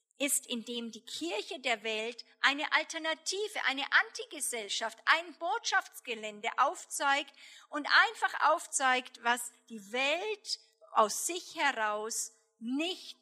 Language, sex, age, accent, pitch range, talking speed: German, female, 50-69, German, 225-285 Hz, 105 wpm